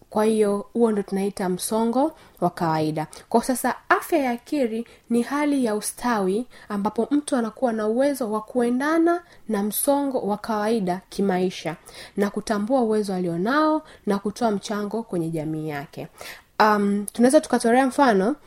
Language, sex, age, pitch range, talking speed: Swahili, female, 20-39, 190-245 Hz, 140 wpm